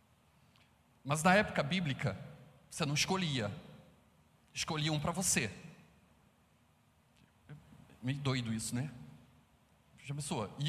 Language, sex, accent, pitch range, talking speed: Portuguese, male, Brazilian, 145-215 Hz, 85 wpm